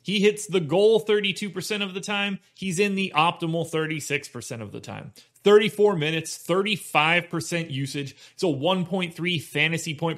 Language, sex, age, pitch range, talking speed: English, male, 30-49, 145-195 Hz, 145 wpm